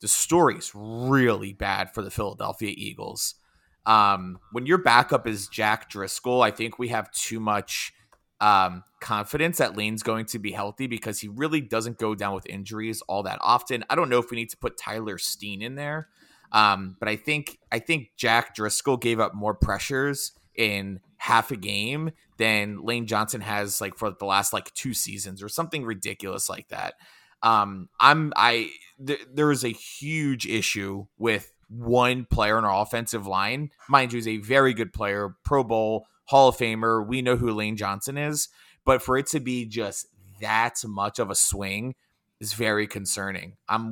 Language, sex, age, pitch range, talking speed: English, male, 20-39, 100-130 Hz, 185 wpm